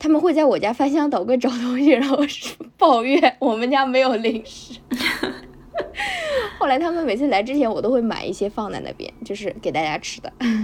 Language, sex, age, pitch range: Chinese, female, 20-39, 210-290 Hz